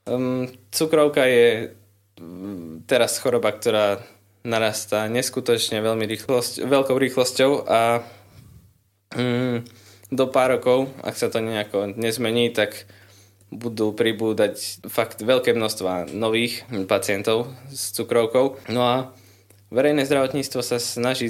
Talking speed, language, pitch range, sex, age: 105 wpm, Slovak, 100-125 Hz, male, 20-39